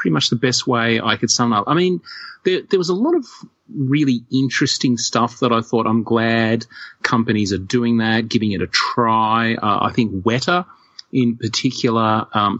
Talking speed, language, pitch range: 190 wpm, English, 100-120 Hz